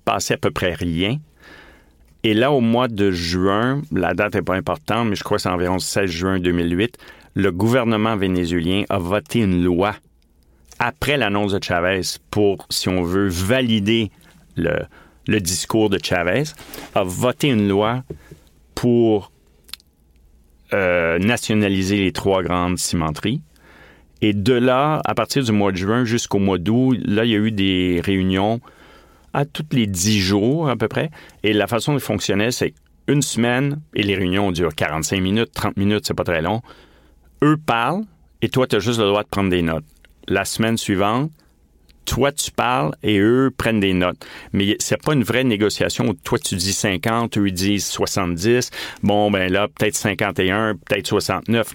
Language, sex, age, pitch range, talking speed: French, male, 40-59, 90-115 Hz, 175 wpm